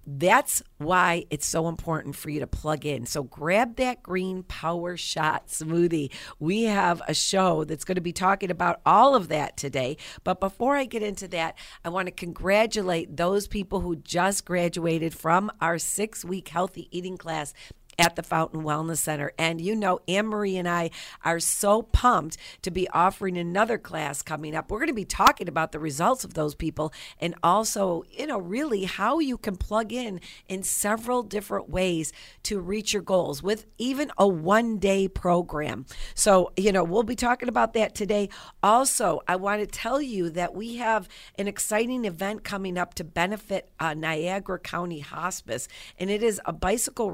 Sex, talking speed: female, 185 wpm